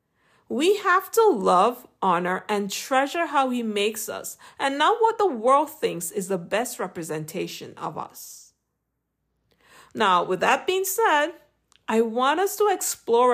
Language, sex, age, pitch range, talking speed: English, female, 50-69, 195-300 Hz, 150 wpm